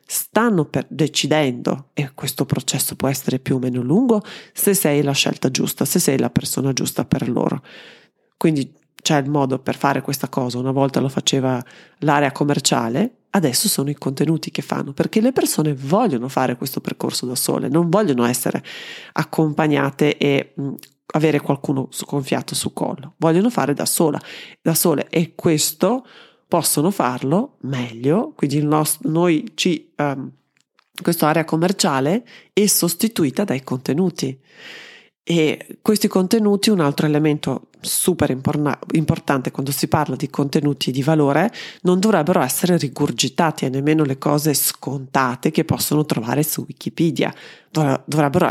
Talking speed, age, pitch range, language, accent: 140 wpm, 30-49, 140-175 Hz, Italian, native